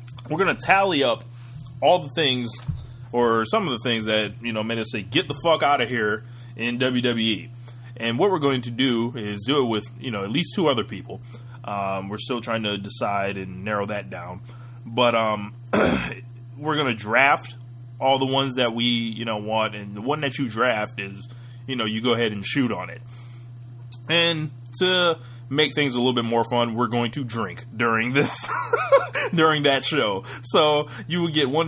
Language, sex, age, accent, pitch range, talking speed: English, male, 20-39, American, 110-125 Hz, 205 wpm